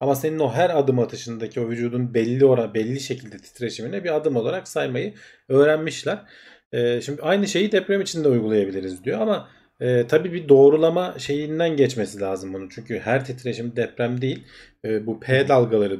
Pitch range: 110-140 Hz